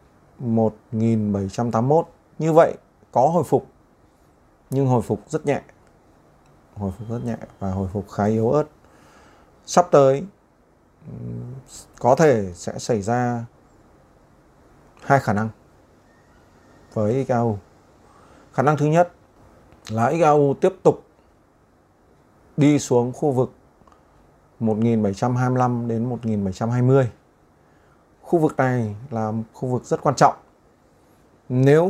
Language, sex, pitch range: Vietnamese, male, 105-135 Hz